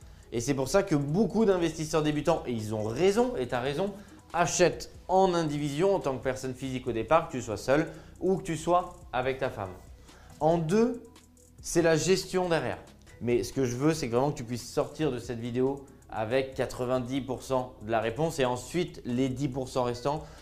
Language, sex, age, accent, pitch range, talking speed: French, male, 20-39, French, 130-160 Hz, 195 wpm